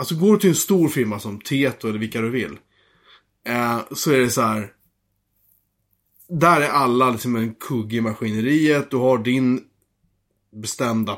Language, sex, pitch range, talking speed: Swedish, male, 110-145 Hz, 165 wpm